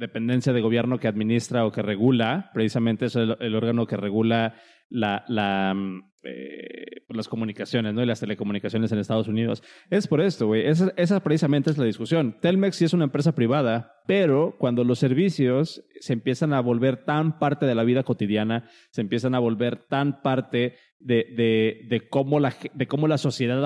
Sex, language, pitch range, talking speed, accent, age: male, Spanish, 115-145 Hz, 185 wpm, Mexican, 30-49